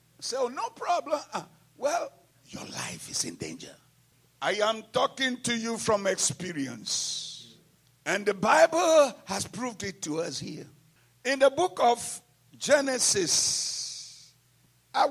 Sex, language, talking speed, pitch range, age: male, English, 125 wpm, 150-225 Hz, 60-79